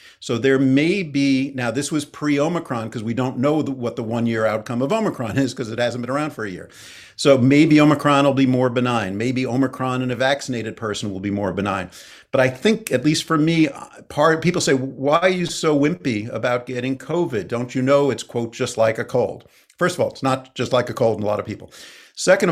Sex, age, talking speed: male, 50-69, 235 wpm